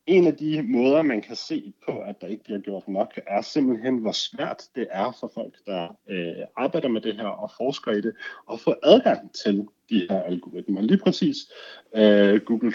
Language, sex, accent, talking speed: Danish, male, native, 195 wpm